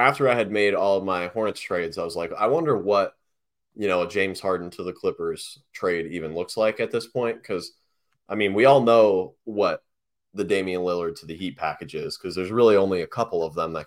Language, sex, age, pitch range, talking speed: English, male, 20-39, 95-145 Hz, 235 wpm